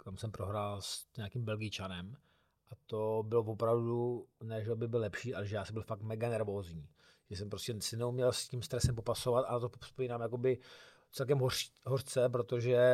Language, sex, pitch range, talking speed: Czech, male, 110-130 Hz, 185 wpm